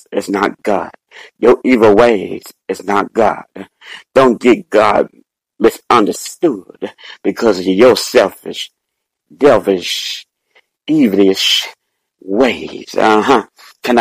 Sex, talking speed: male, 95 wpm